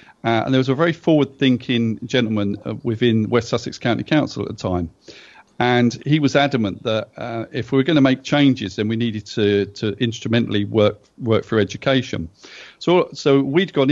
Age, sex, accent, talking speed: 40-59, male, British, 195 wpm